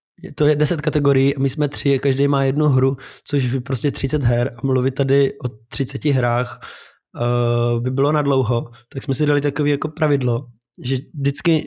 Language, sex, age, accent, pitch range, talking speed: Czech, male, 20-39, native, 125-145 Hz, 185 wpm